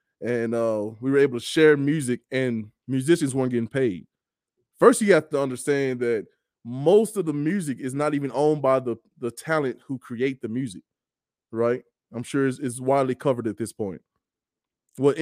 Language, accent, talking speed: English, American, 180 wpm